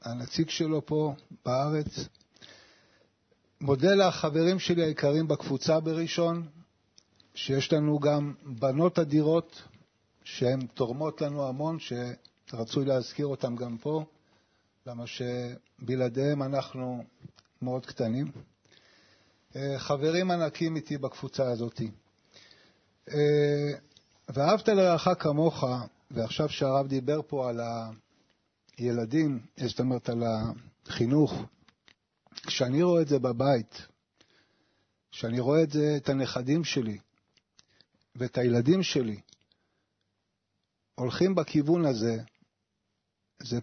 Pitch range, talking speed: 115-155 Hz, 90 wpm